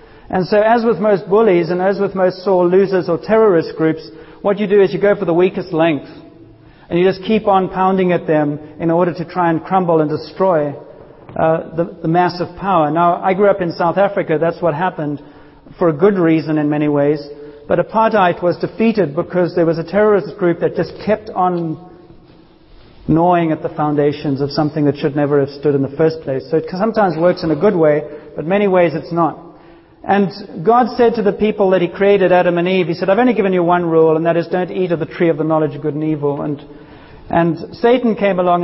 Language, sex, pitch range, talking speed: English, male, 155-190 Hz, 230 wpm